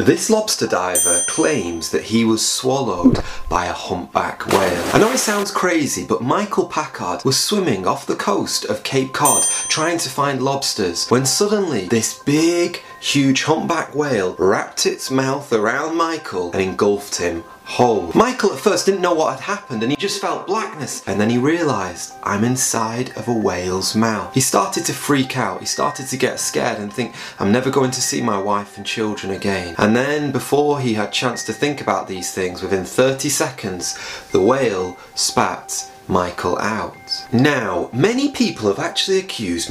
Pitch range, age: 100-145 Hz, 30-49